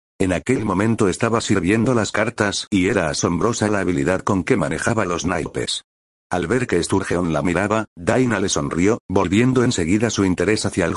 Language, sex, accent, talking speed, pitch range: Spanish, male, Spanish, 175 wpm, 95-115 Hz